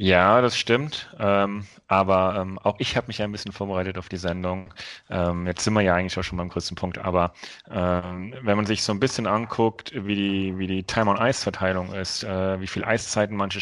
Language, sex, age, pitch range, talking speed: German, male, 30-49, 95-105 Hz, 220 wpm